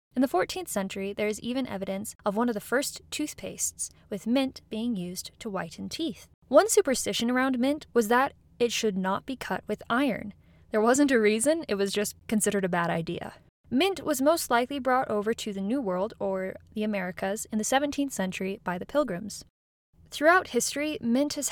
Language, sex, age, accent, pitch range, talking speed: English, female, 10-29, American, 205-275 Hz, 190 wpm